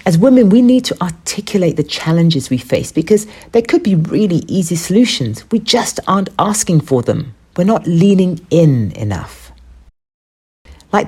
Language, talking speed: English, 155 wpm